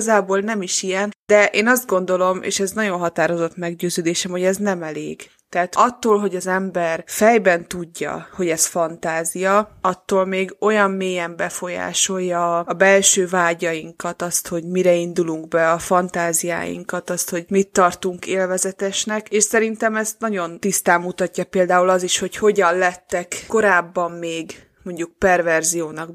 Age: 20-39